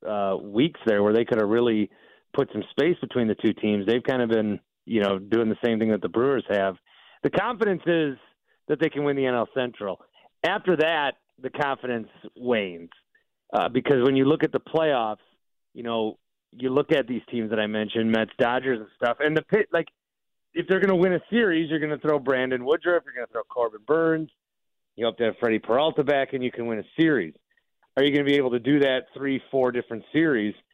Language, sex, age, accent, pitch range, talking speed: English, male, 40-59, American, 115-145 Hz, 225 wpm